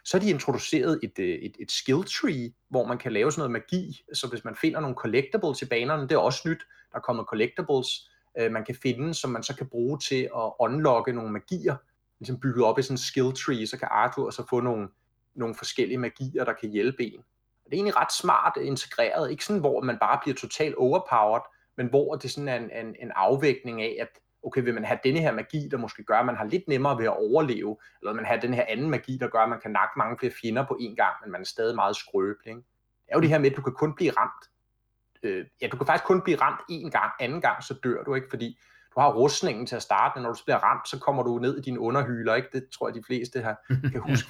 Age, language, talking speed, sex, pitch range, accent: 30-49, Danish, 260 wpm, male, 115-140 Hz, native